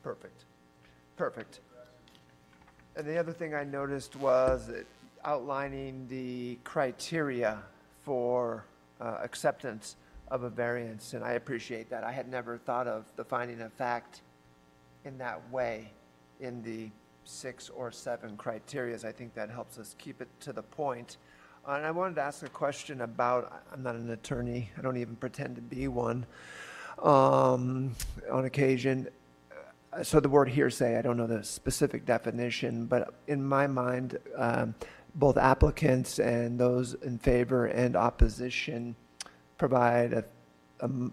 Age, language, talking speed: 50-69, English, 145 wpm